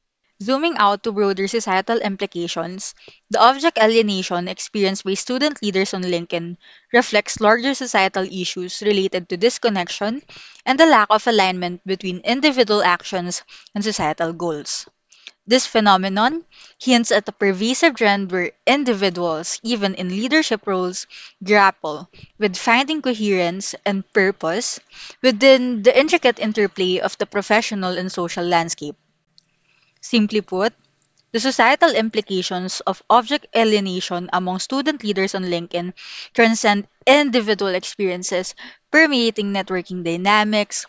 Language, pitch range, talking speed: English, 185-230 Hz, 120 wpm